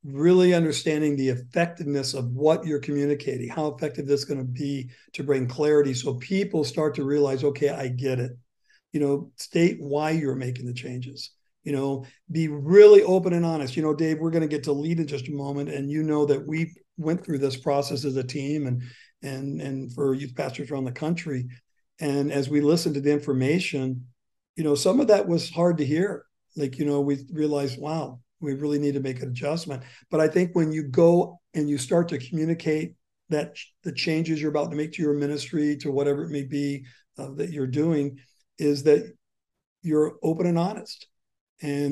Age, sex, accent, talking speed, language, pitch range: 50-69, male, American, 205 wpm, English, 140-155 Hz